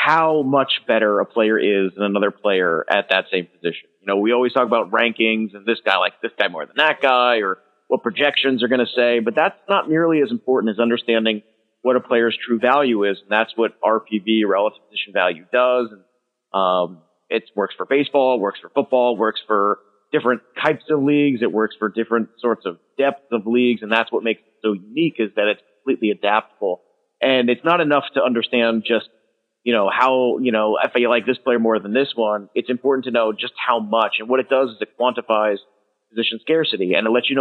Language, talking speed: English, 220 wpm